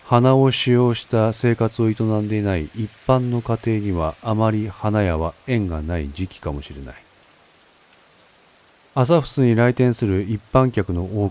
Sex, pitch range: male, 90-120 Hz